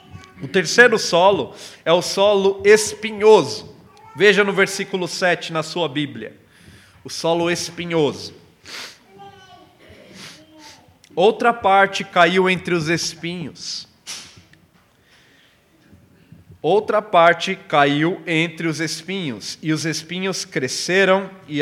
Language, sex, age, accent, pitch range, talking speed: Portuguese, male, 40-59, Brazilian, 150-195 Hz, 95 wpm